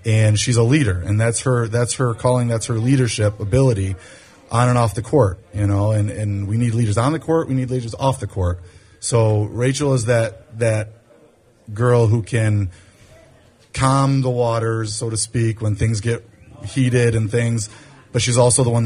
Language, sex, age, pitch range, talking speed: English, male, 30-49, 105-125 Hz, 190 wpm